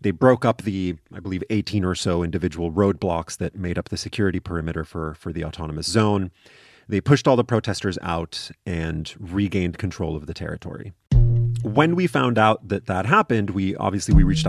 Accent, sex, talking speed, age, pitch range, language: American, male, 185 wpm, 30-49, 95-135 Hz, English